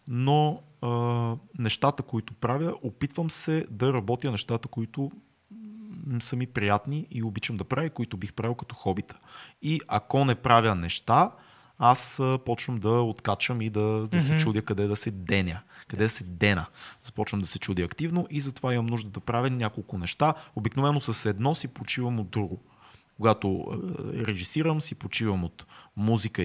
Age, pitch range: 30-49, 105-140 Hz